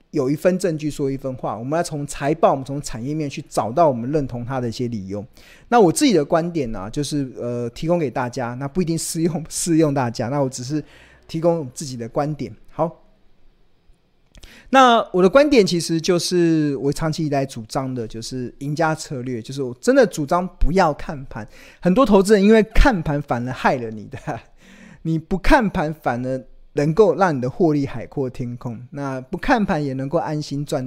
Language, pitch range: Chinese, 125-170 Hz